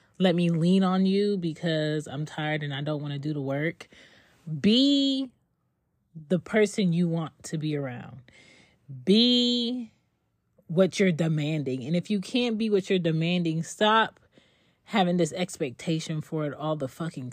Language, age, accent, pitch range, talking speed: English, 30-49, American, 135-175 Hz, 155 wpm